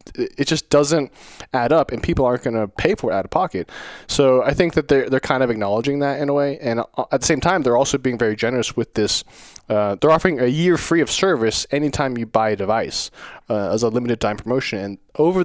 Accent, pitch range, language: American, 110-145 Hz, English